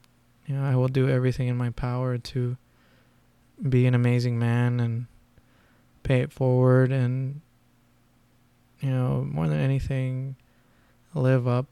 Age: 20-39